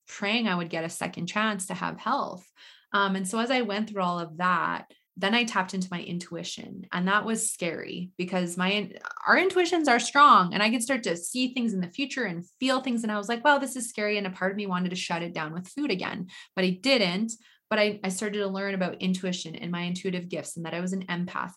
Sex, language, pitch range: female, English, 175-205 Hz